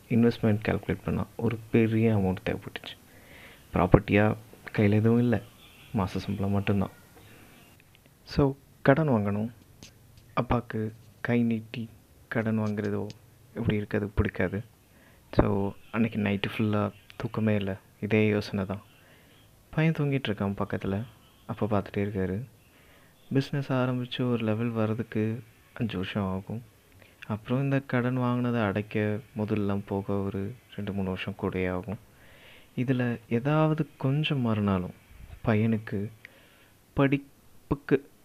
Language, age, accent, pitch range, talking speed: Tamil, 30-49, native, 100-120 Hz, 105 wpm